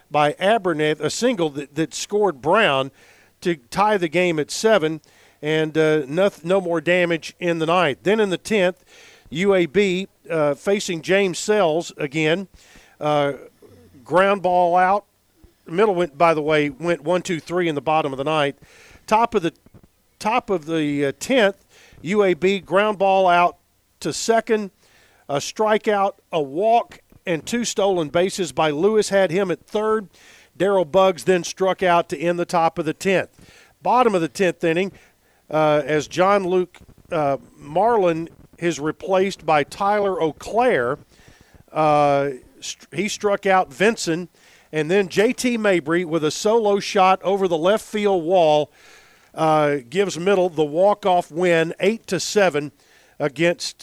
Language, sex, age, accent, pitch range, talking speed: English, male, 50-69, American, 155-195 Hz, 150 wpm